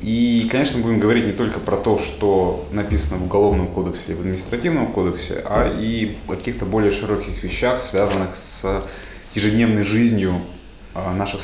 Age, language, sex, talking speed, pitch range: 20-39, Russian, male, 155 wpm, 95-110 Hz